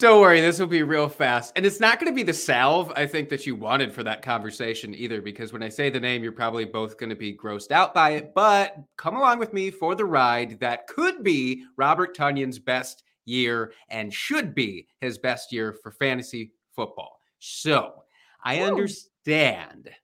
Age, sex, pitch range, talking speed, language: 30-49, male, 120-180 Hz, 200 wpm, English